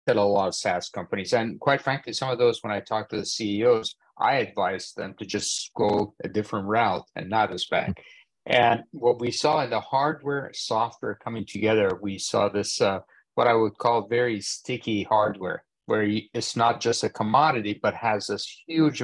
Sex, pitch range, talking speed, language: male, 105-125 Hz, 195 wpm, English